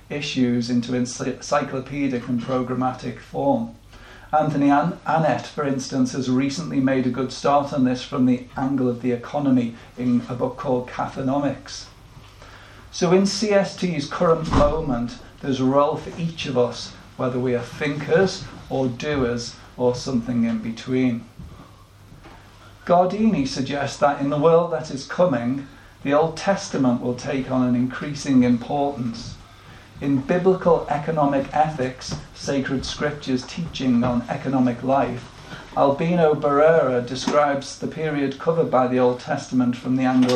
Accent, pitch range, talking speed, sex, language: British, 125-145 Hz, 135 wpm, male, English